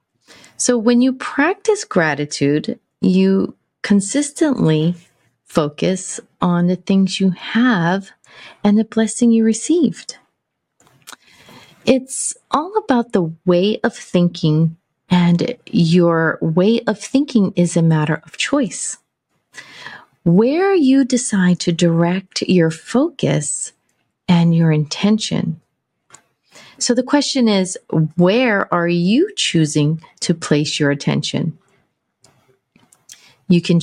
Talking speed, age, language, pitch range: 105 wpm, 30-49, English, 165-225 Hz